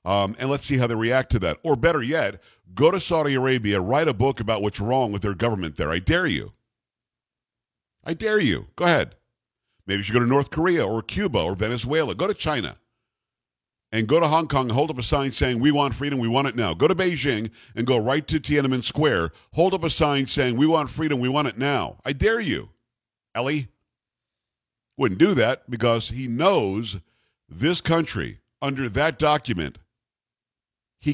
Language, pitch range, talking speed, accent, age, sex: English, 115-145 Hz, 200 wpm, American, 50-69, male